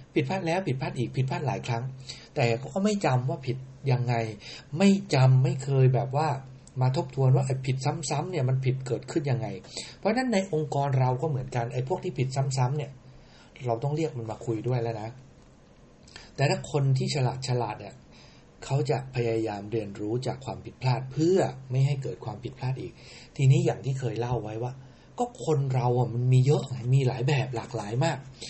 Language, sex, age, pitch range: English, male, 60-79, 125-145 Hz